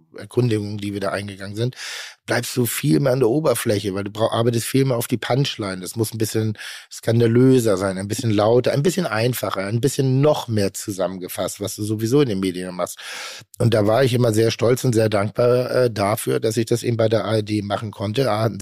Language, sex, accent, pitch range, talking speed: German, male, German, 105-120 Hz, 220 wpm